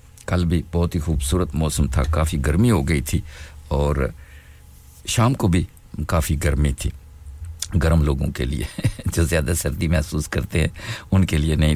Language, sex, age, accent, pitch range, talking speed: English, male, 50-69, Indian, 75-90 Hz, 165 wpm